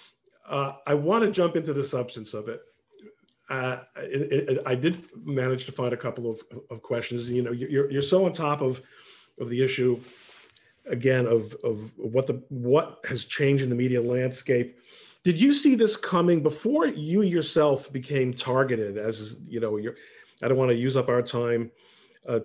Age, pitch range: 40-59, 120-150 Hz